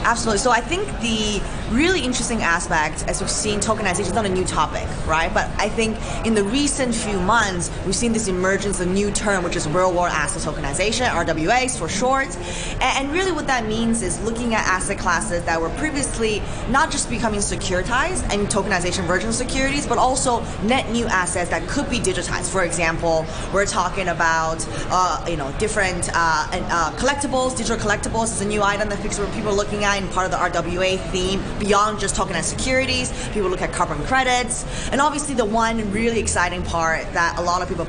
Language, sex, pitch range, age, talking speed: English, female, 170-220 Hz, 20-39, 195 wpm